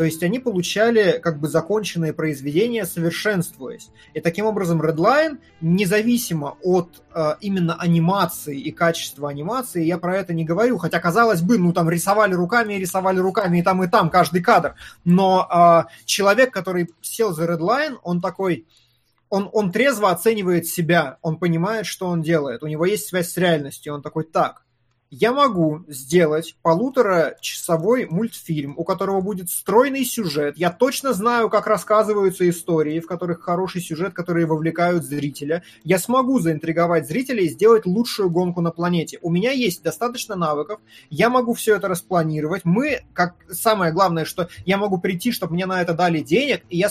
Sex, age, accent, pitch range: male, 20-39, native, 165-210 Hz